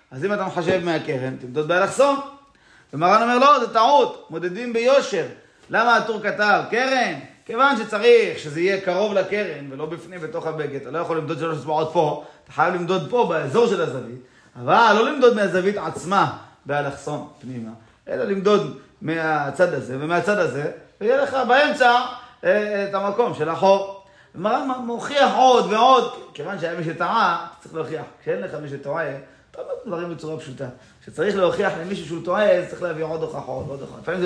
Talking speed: 150 wpm